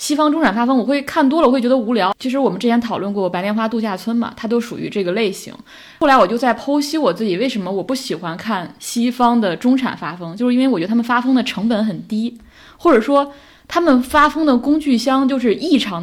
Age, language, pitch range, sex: 20-39, Chinese, 210-275 Hz, female